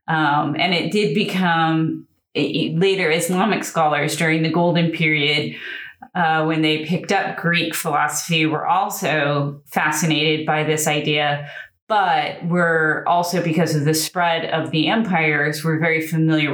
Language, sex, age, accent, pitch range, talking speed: English, female, 30-49, American, 155-200 Hz, 140 wpm